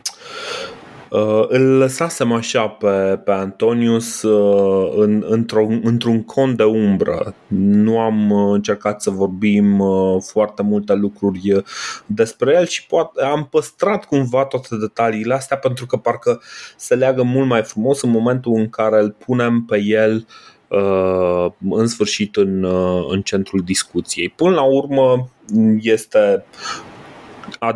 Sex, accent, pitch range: male, native, 100-130 Hz